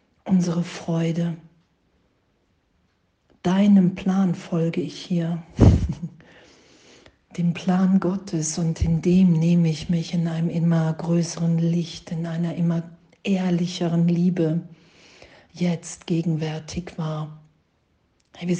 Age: 50-69